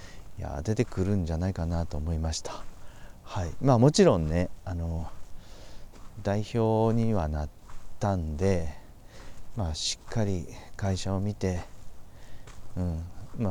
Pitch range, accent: 85-105 Hz, native